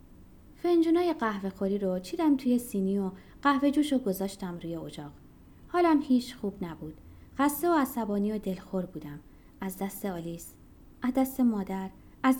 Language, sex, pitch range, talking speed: Persian, female, 185-265 Hz, 150 wpm